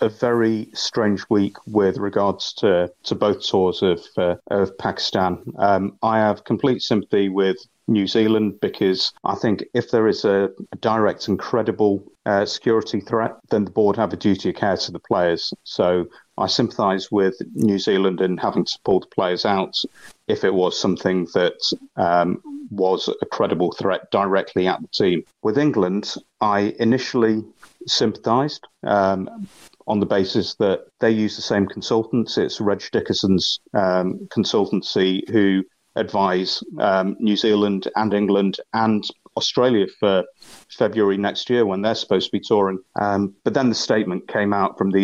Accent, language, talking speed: British, English, 160 wpm